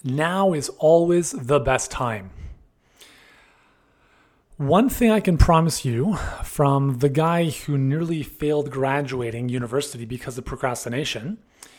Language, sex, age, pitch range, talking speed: English, male, 30-49, 130-170 Hz, 115 wpm